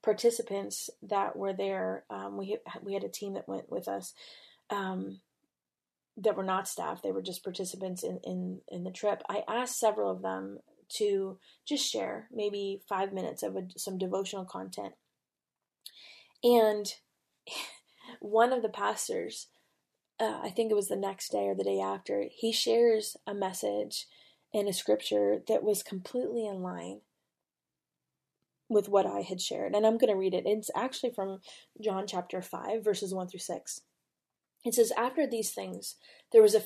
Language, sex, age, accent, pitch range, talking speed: English, female, 20-39, American, 185-230 Hz, 165 wpm